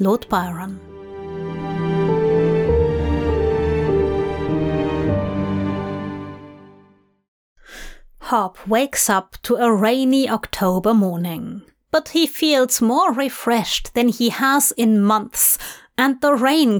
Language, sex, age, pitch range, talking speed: English, female, 30-49, 195-270 Hz, 80 wpm